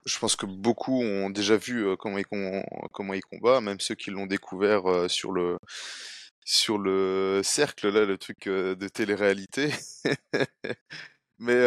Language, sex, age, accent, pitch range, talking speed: French, male, 20-39, French, 95-120 Hz, 135 wpm